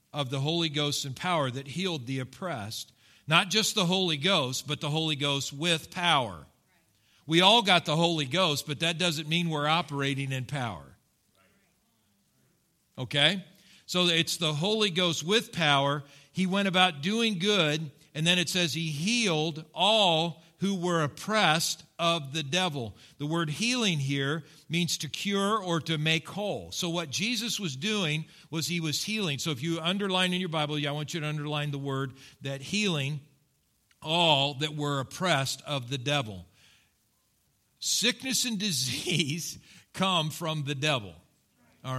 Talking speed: 160 wpm